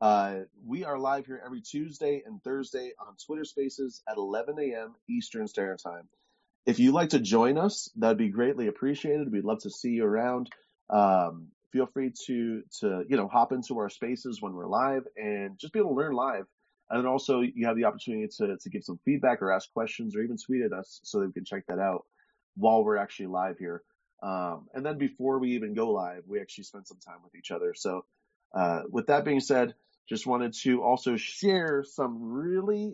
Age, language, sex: 30-49, English, male